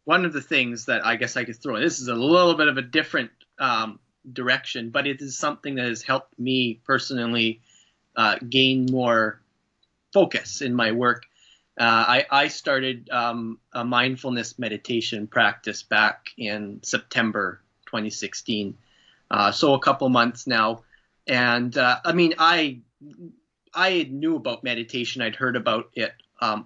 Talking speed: 160 wpm